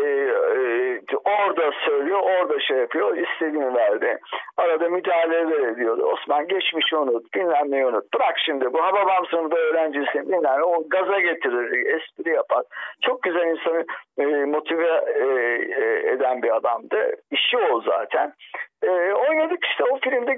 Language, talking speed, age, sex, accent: Turkish, 120 wpm, 60-79, male, native